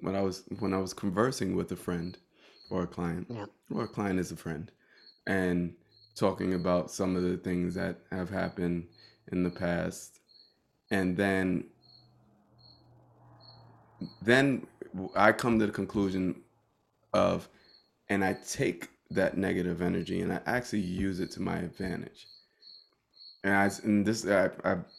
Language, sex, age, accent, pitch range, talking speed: English, male, 20-39, American, 90-105 Hz, 145 wpm